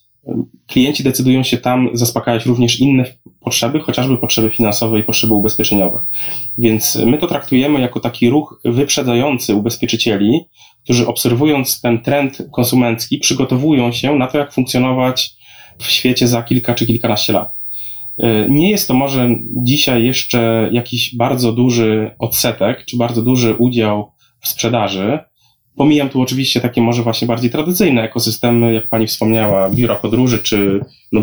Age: 20-39